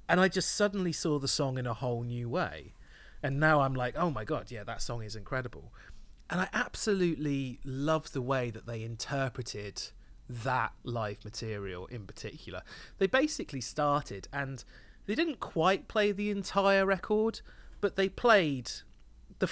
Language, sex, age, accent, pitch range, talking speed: English, male, 30-49, British, 115-160 Hz, 165 wpm